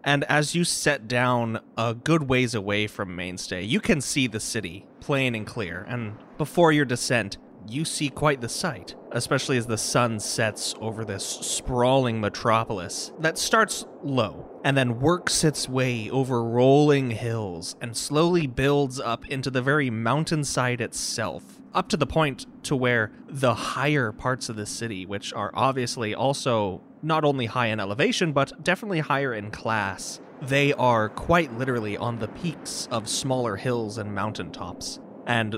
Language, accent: English, American